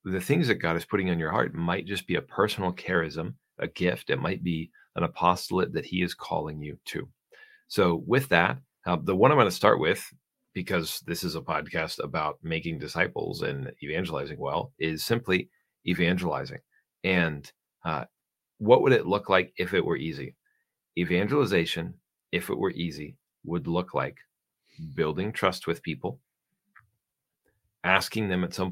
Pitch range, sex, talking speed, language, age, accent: 85-95 Hz, male, 165 wpm, English, 40-59, American